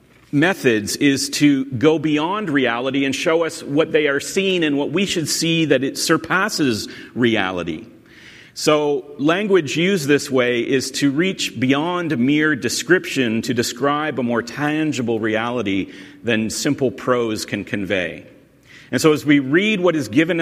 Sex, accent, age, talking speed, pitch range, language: male, American, 40-59, 155 wpm, 115-150 Hz, English